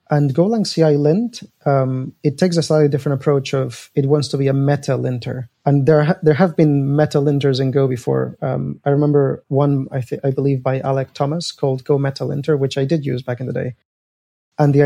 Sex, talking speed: male, 220 wpm